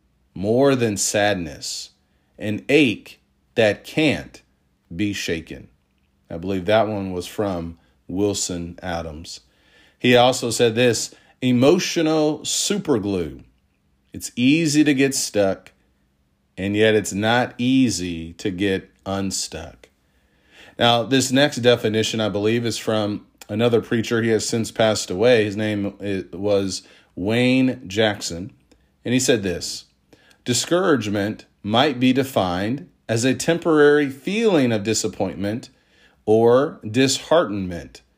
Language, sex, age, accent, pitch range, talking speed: English, male, 40-59, American, 95-135 Hz, 115 wpm